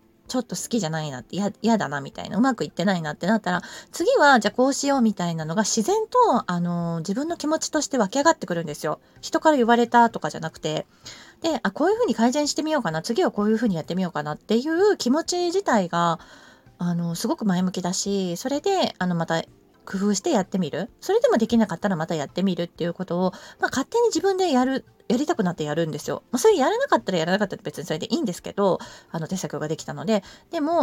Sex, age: female, 20-39